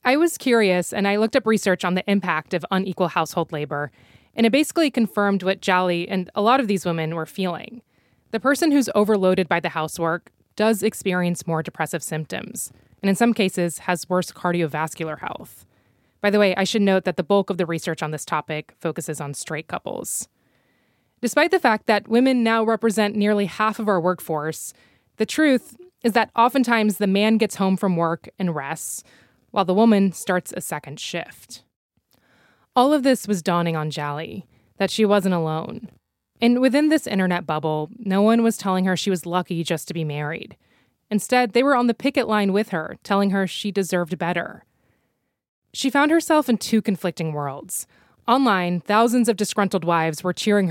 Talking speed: 185 wpm